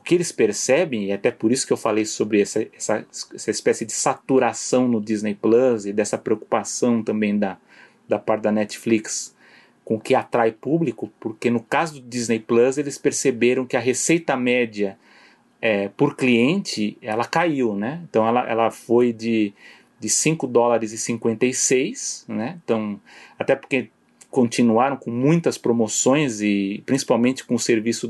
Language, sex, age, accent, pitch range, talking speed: Portuguese, male, 30-49, Brazilian, 110-135 Hz, 150 wpm